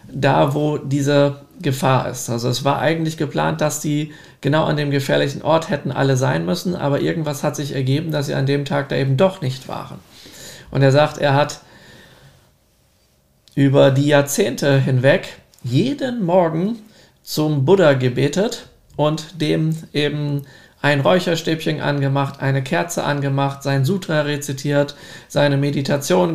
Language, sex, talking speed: German, male, 145 wpm